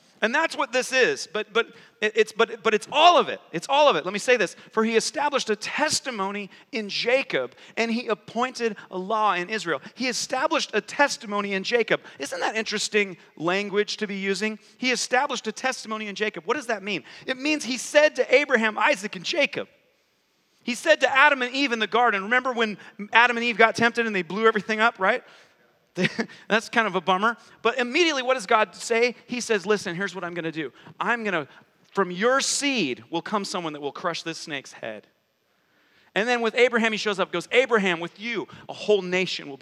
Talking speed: 210 wpm